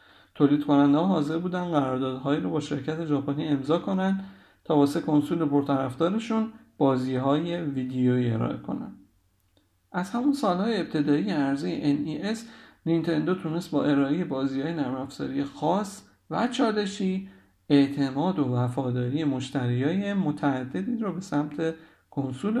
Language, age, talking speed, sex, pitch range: Persian, 50-69, 125 wpm, male, 130-175 Hz